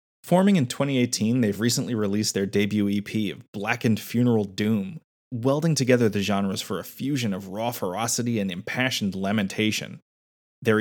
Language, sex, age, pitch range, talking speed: English, male, 30-49, 100-125 Hz, 150 wpm